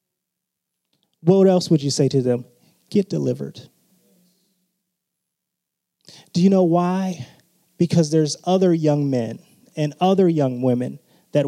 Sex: male